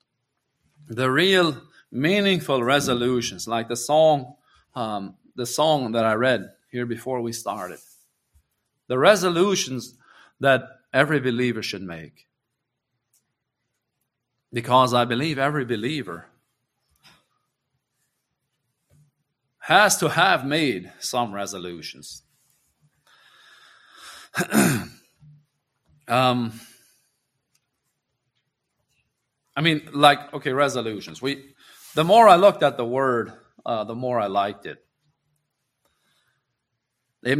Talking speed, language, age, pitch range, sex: 90 wpm, English, 40-59, 120-150 Hz, male